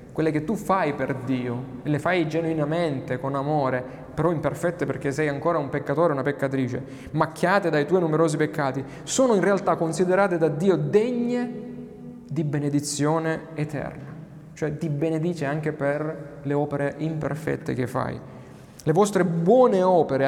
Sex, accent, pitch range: male, native, 135-160 Hz